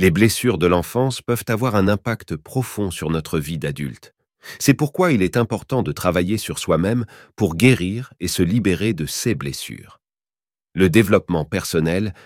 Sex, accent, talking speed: male, French, 160 wpm